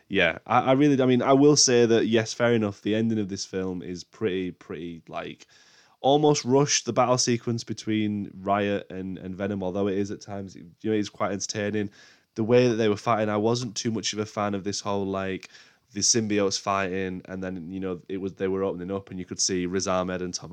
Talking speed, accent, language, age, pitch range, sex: 235 wpm, British, English, 20-39, 95-110 Hz, male